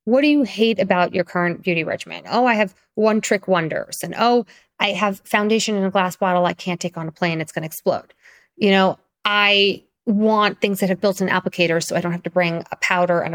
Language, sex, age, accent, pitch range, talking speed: English, female, 30-49, American, 175-230 Hz, 230 wpm